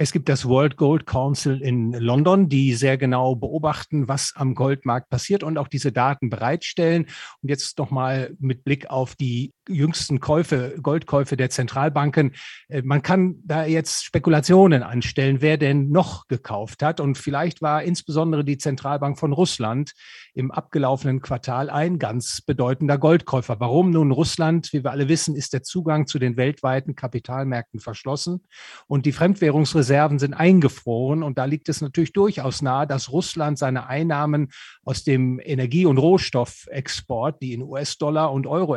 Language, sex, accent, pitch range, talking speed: German, male, German, 130-155 Hz, 155 wpm